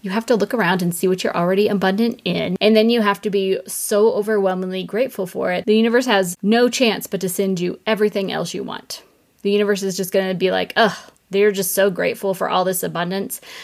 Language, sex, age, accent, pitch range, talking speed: English, female, 20-39, American, 185-210 Hz, 235 wpm